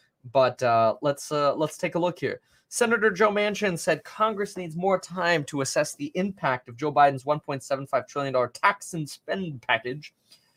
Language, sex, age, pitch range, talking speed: English, male, 20-39, 130-180 Hz, 170 wpm